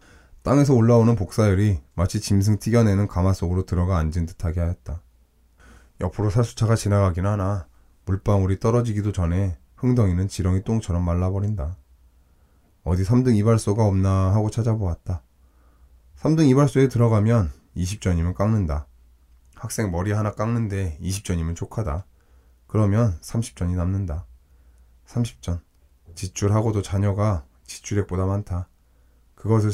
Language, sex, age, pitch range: Korean, male, 20-39, 75-105 Hz